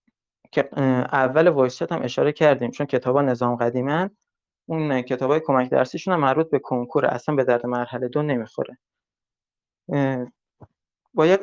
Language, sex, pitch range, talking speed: Persian, male, 125-155 Hz, 140 wpm